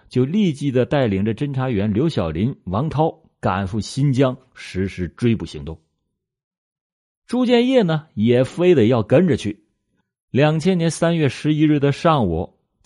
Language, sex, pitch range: Chinese, male, 100-155 Hz